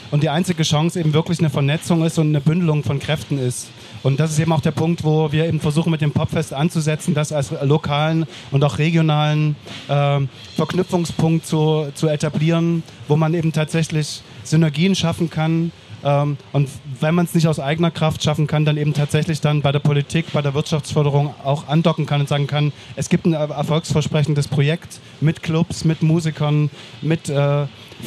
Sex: male